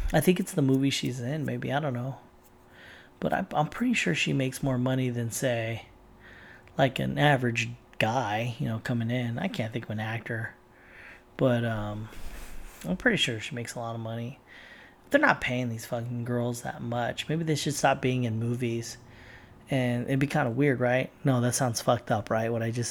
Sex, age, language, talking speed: male, 30-49, English, 205 wpm